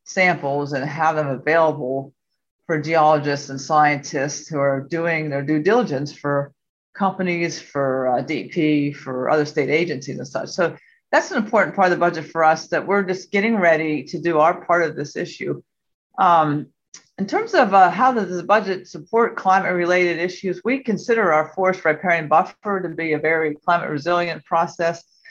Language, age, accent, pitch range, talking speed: English, 40-59, American, 150-190 Hz, 175 wpm